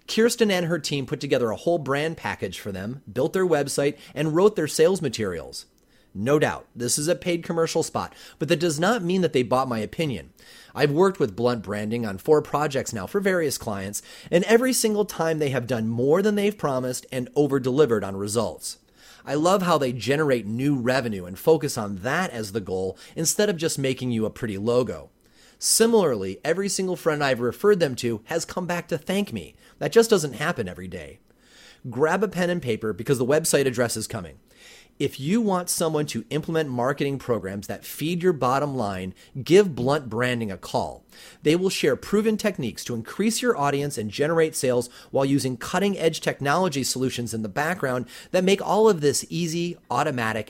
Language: English